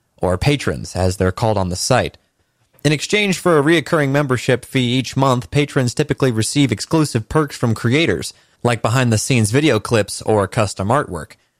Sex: male